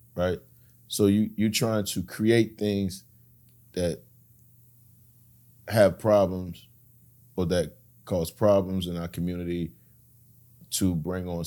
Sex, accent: male, American